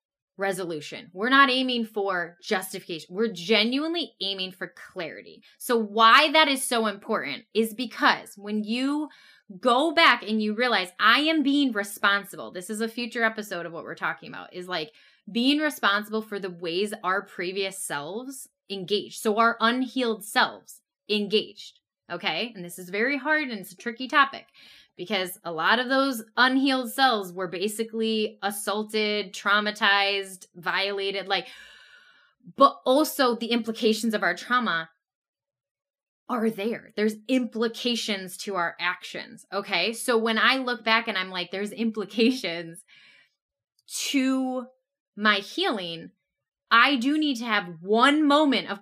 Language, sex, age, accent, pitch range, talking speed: English, female, 10-29, American, 195-250 Hz, 145 wpm